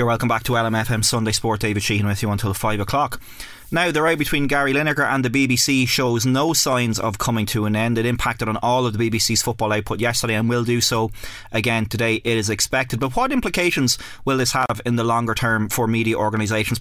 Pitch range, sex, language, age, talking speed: 110-125 Hz, male, English, 30-49, 220 wpm